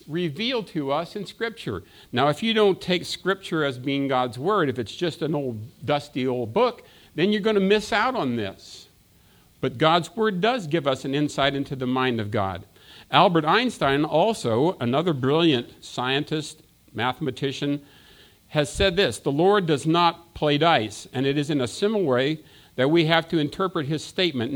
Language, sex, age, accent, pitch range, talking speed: English, male, 50-69, American, 135-185 Hz, 180 wpm